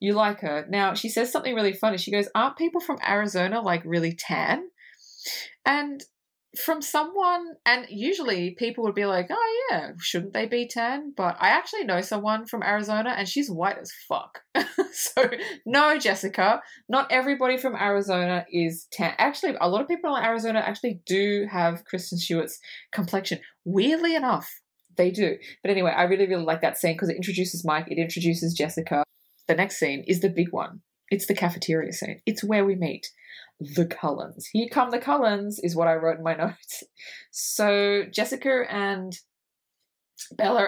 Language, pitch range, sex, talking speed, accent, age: English, 170-240 Hz, female, 175 wpm, Australian, 20-39